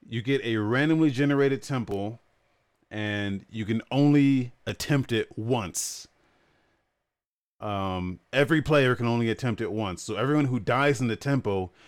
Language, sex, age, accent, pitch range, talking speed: English, male, 30-49, American, 95-130 Hz, 140 wpm